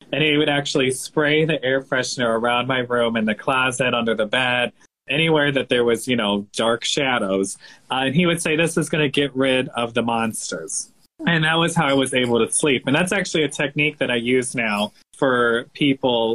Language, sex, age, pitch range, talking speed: English, male, 20-39, 120-160 Hz, 215 wpm